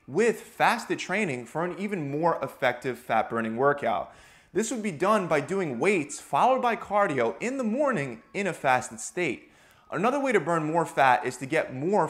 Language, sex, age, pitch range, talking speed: English, male, 30-49, 130-185 Hz, 190 wpm